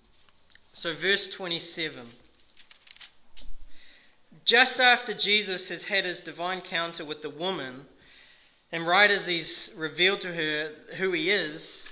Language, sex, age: English, male, 20-39